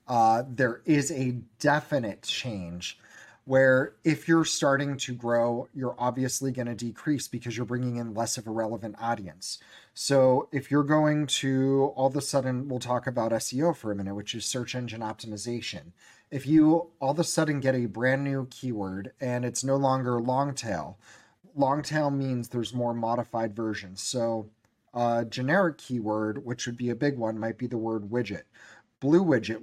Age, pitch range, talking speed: 30-49, 115-140 Hz, 180 wpm